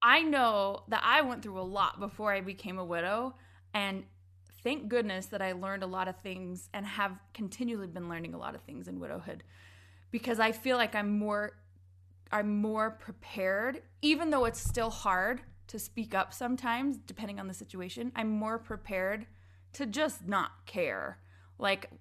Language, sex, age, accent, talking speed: English, female, 20-39, American, 175 wpm